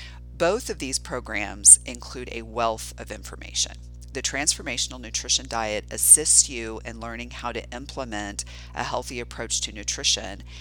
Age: 40-59